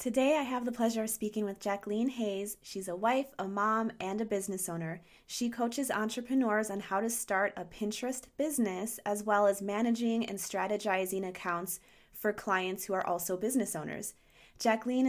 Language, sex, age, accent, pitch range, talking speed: English, female, 20-39, American, 190-230 Hz, 175 wpm